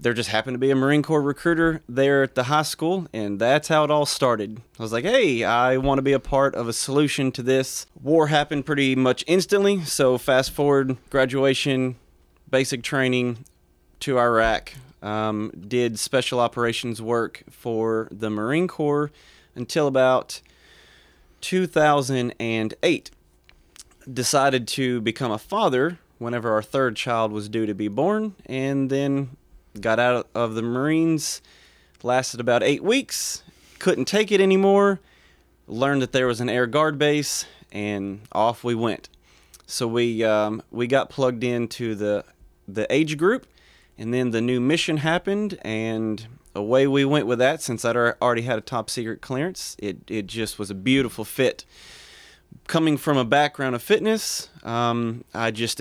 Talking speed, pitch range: 160 wpm, 110-140 Hz